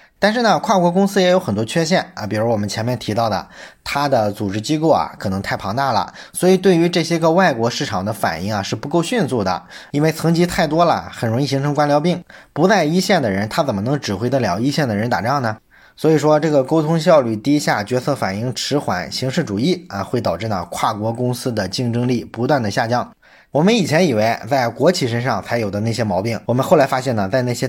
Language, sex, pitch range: Chinese, male, 110-155 Hz